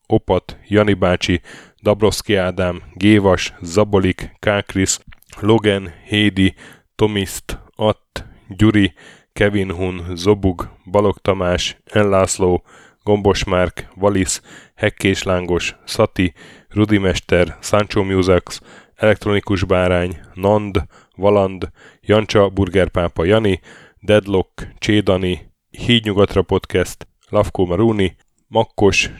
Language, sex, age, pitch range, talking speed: Hungarian, male, 10-29, 90-105 Hz, 85 wpm